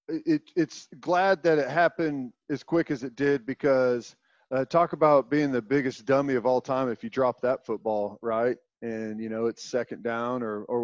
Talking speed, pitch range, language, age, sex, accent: 195 wpm, 125-160 Hz, English, 40-59, male, American